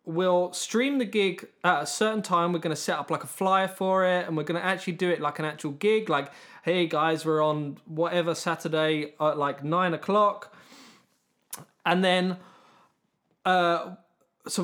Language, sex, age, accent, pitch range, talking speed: English, male, 20-39, British, 155-195 Hz, 180 wpm